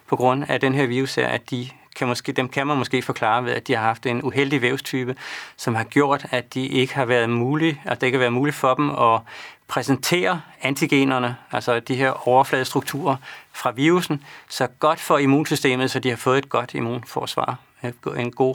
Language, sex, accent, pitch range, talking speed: Danish, male, native, 120-140 Hz, 215 wpm